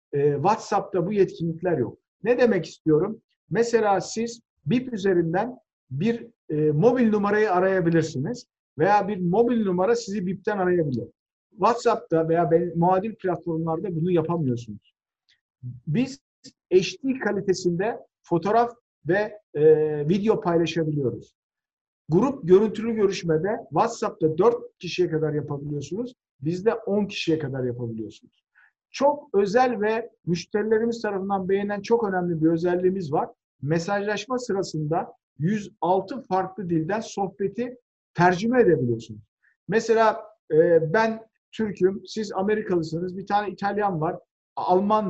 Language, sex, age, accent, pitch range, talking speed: Turkish, male, 50-69, native, 165-220 Hz, 105 wpm